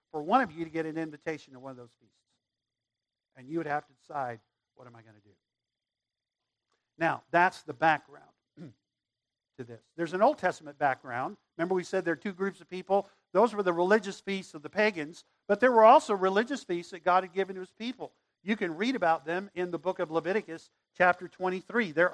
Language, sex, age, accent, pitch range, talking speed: English, male, 50-69, American, 175-260 Hz, 215 wpm